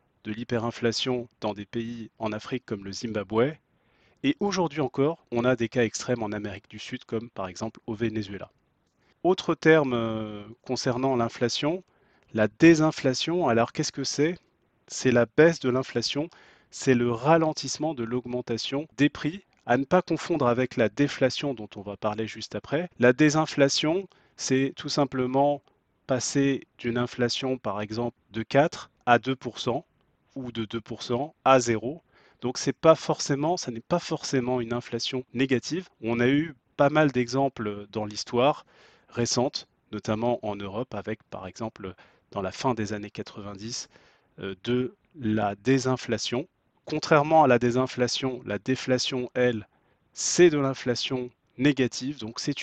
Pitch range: 115-145 Hz